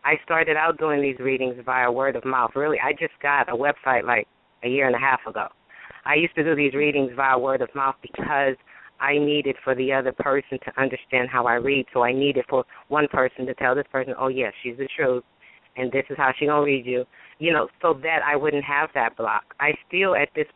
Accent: American